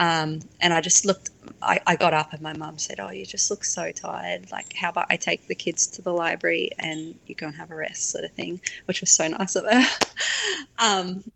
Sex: female